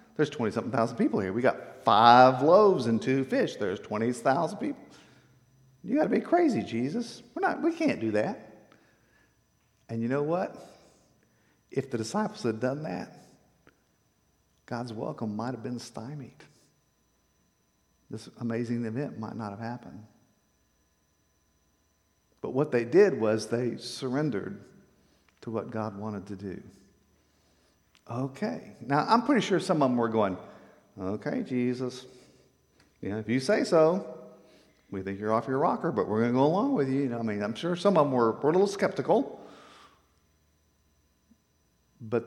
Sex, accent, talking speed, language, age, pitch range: male, American, 160 wpm, English, 50-69, 105-140 Hz